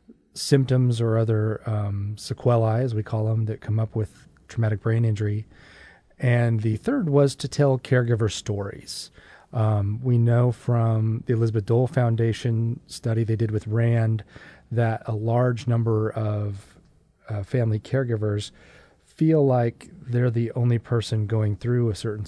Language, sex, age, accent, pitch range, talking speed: English, male, 30-49, American, 110-130 Hz, 150 wpm